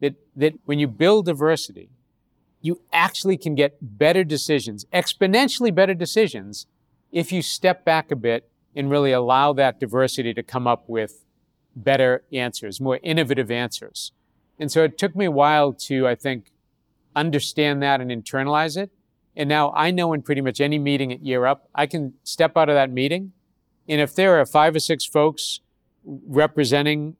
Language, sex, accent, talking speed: English, male, American, 170 wpm